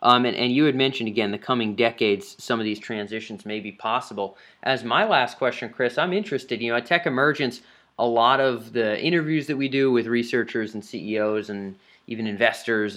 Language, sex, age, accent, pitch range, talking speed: English, male, 20-39, American, 115-145 Hz, 205 wpm